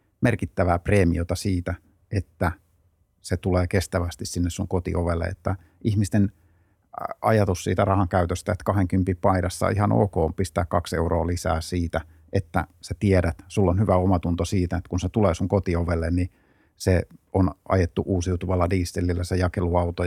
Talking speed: 145 wpm